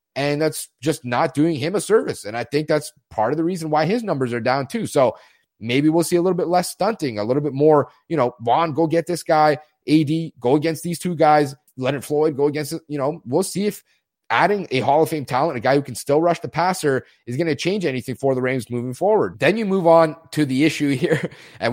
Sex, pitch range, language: male, 130-165 Hz, English